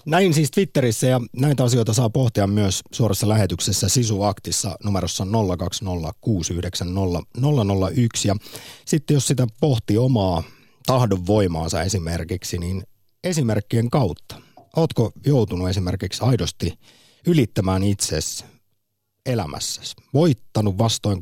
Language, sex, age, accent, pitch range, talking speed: Finnish, male, 50-69, native, 95-125 Hz, 95 wpm